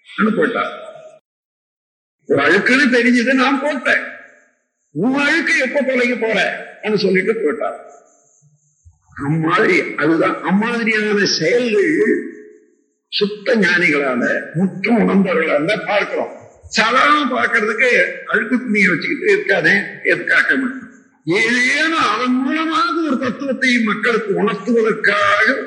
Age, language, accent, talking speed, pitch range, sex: 50-69, Tamil, native, 70 wpm, 210-305 Hz, male